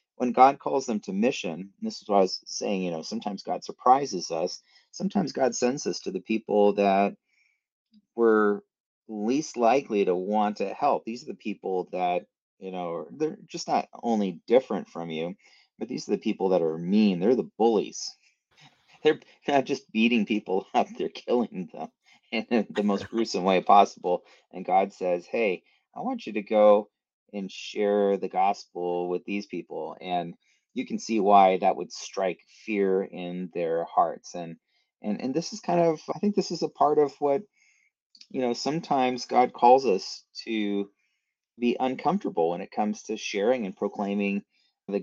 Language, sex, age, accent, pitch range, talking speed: English, male, 30-49, American, 100-125 Hz, 175 wpm